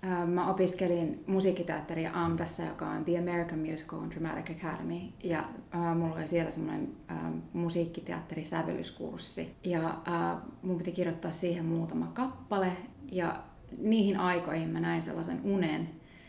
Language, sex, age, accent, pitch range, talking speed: Finnish, female, 30-49, native, 165-190 Hz, 120 wpm